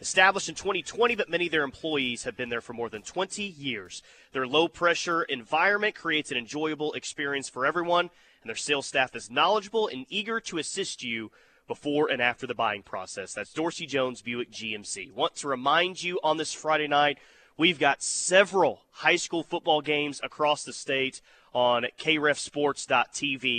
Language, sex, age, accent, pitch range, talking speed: English, male, 30-49, American, 130-175 Hz, 170 wpm